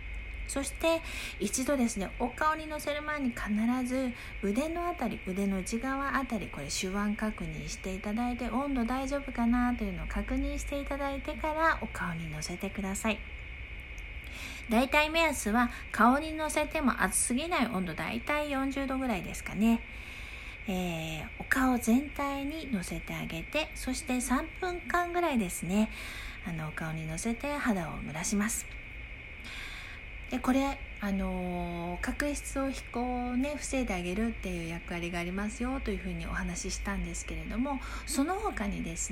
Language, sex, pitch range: Japanese, female, 185-275 Hz